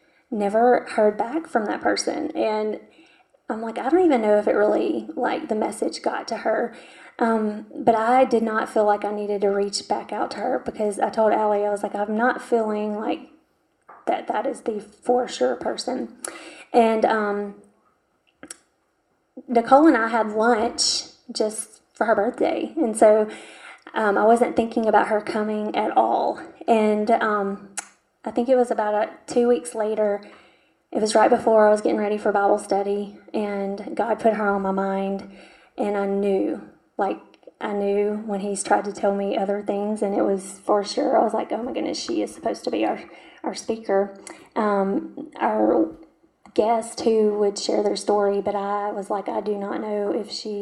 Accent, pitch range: American, 205-235 Hz